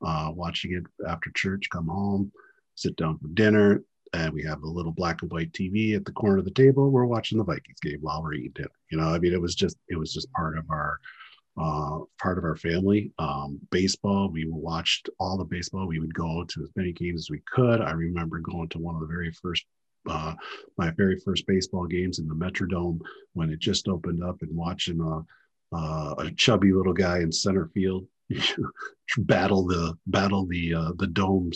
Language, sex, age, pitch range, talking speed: English, male, 40-59, 80-100 Hz, 210 wpm